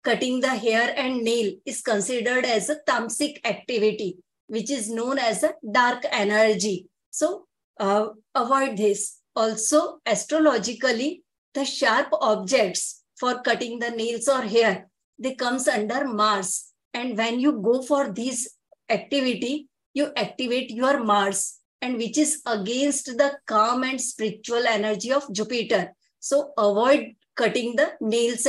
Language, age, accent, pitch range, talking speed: English, 20-39, Indian, 220-275 Hz, 135 wpm